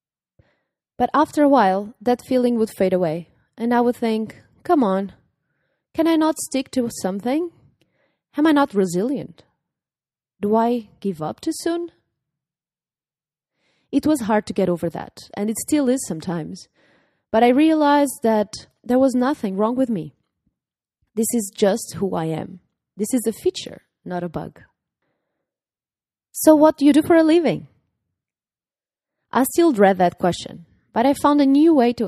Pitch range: 185-265 Hz